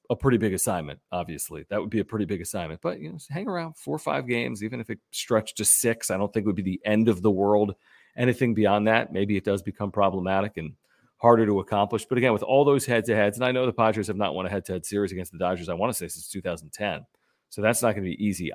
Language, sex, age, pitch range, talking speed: English, male, 40-59, 100-115 Hz, 280 wpm